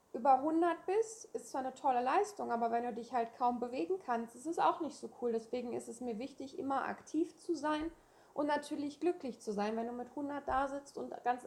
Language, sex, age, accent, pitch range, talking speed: German, female, 20-39, German, 230-280 Hz, 230 wpm